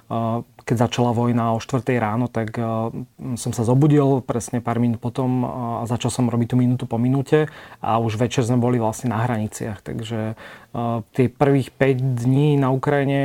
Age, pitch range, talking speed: 30-49, 120-130 Hz, 170 wpm